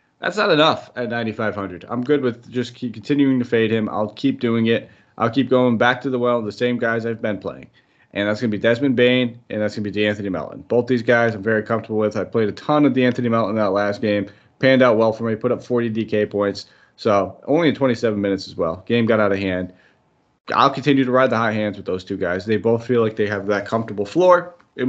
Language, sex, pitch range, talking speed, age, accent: English, male, 105-120 Hz, 255 wpm, 30-49, American